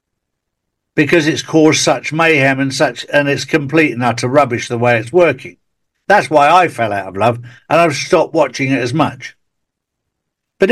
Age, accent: 60-79, British